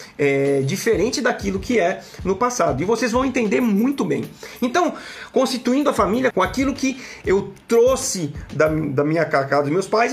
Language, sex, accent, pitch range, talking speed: Portuguese, male, Brazilian, 155-250 Hz, 165 wpm